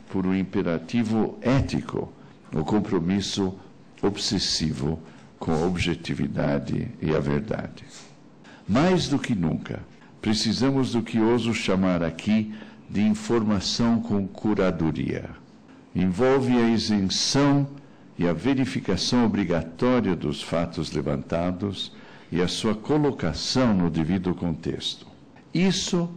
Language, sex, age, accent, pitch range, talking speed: Portuguese, male, 60-79, Brazilian, 85-130 Hz, 105 wpm